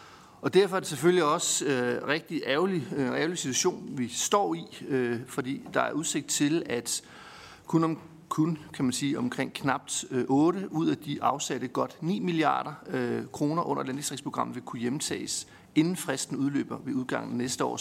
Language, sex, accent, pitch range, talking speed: Danish, male, native, 135-175 Hz, 180 wpm